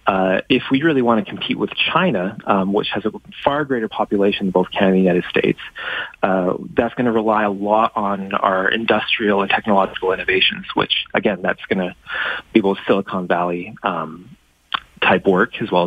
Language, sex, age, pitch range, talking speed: English, male, 30-49, 95-130 Hz, 185 wpm